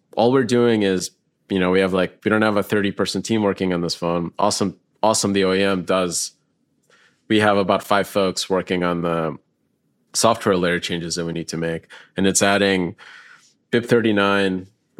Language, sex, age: English, male, 30-49